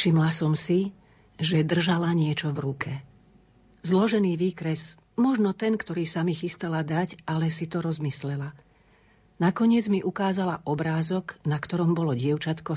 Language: Slovak